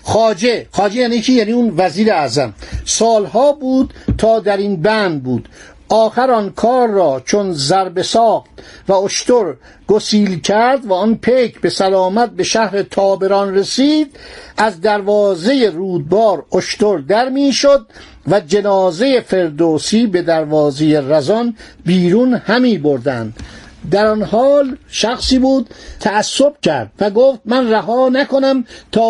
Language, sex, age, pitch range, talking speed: Persian, male, 60-79, 190-245 Hz, 125 wpm